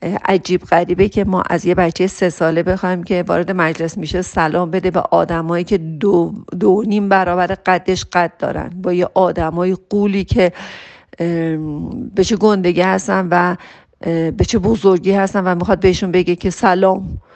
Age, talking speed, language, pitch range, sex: 50-69, 160 wpm, Persian, 170-190 Hz, female